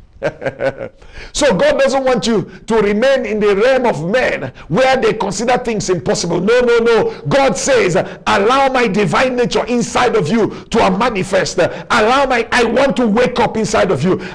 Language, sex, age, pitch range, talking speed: English, male, 50-69, 215-270 Hz, 170 wpm